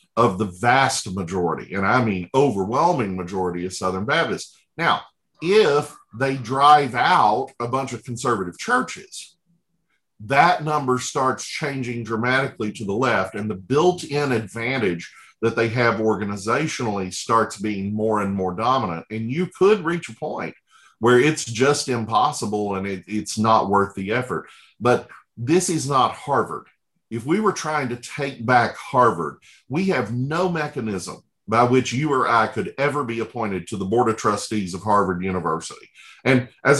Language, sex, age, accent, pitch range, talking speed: English, male, 50-69, American, 100-145 Hz, 155 wpm